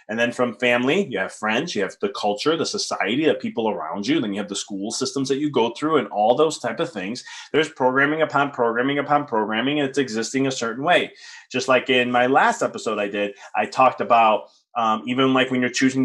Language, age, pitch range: English, 20-39, 120-155 Hz